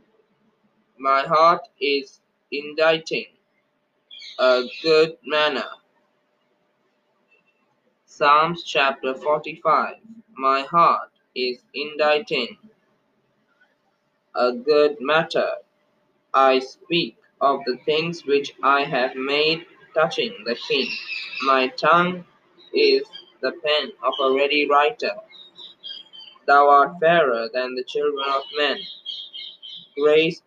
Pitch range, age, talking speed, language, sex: 140-205 Hz, 20-39, 95 wpm, English, male